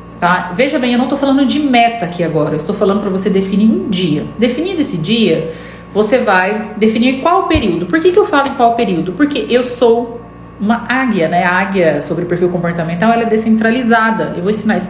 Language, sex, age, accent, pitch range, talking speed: Portuguese, female, 40-59, Brazilian, 185-250 Hz, 210 wpm